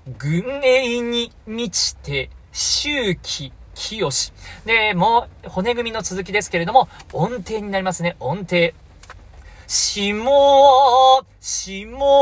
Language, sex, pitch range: Japanese, male, 155-255 Hz